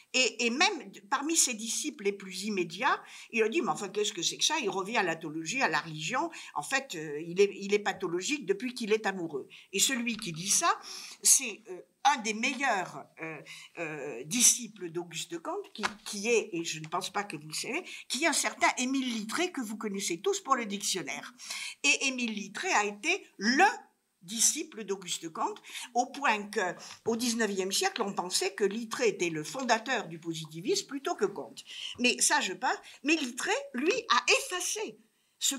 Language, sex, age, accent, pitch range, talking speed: French, female, 50-69, French, 190-295 Hz, 180 wpm